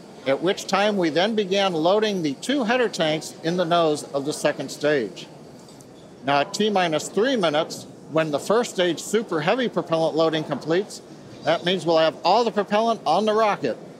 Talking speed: 185 wpm